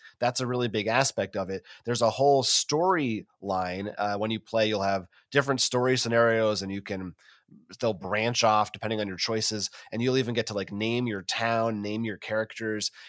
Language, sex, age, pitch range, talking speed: English, male, 30-49, 100-120 Hz, 195 wpm